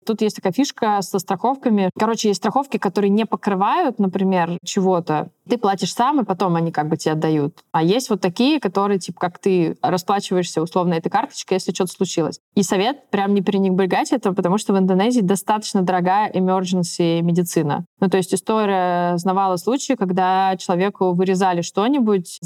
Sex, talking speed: female, 170 wpm